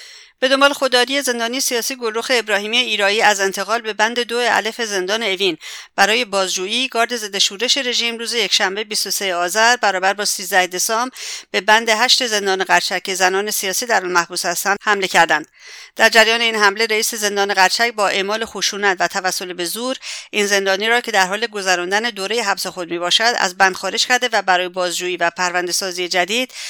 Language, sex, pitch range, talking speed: English, female, 185-230 Hz, 180 wpm